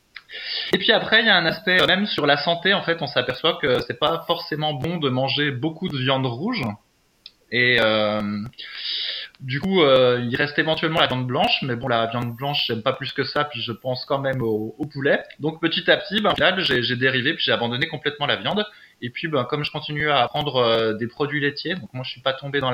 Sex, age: male, 20-39